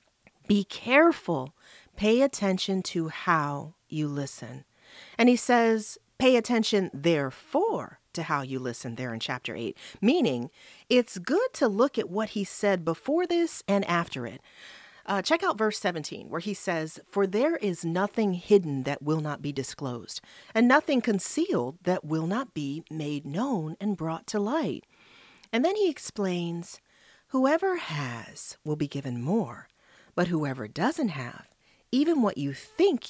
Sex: female